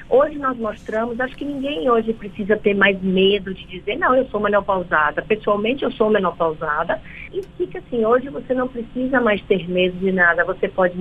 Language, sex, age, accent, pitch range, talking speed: Portuguese, female, 50-69, Brazilian, 195-250 Hz, 190 wpm